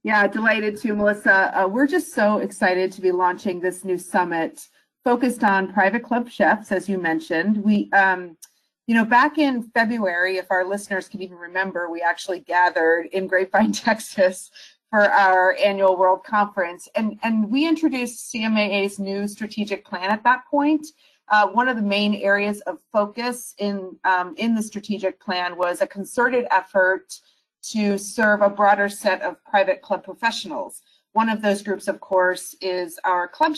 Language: English